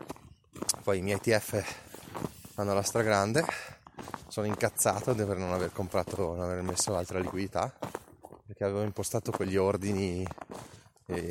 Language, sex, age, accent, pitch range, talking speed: Italian, male, 20-39, native, 90-110 Hz, 135 wpm